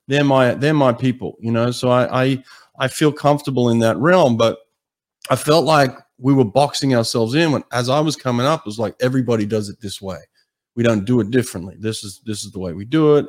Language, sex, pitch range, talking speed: English, male, 110-135 Hz, 240 wpm